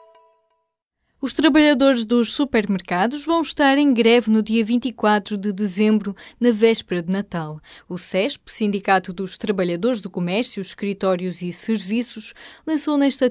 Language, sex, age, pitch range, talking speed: Portuguese, female, 10-29, 185-255 Hz, 130 wpm